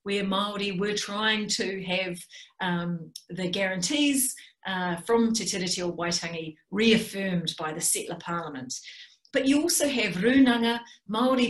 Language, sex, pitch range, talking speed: English, female, 180-240 Hz, 135 wpm